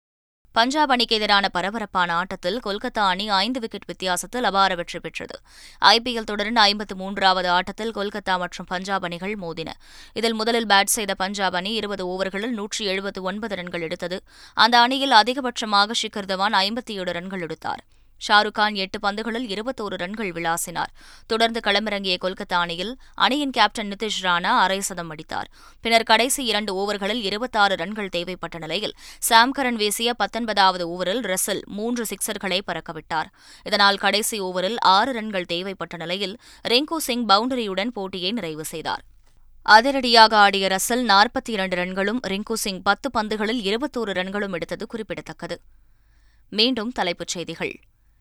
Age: 20-39